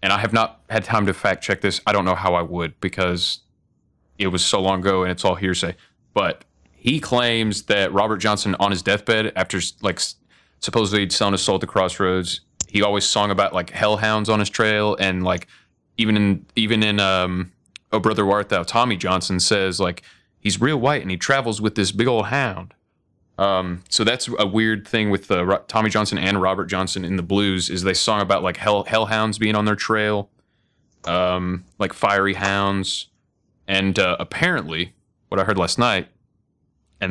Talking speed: 195 wpm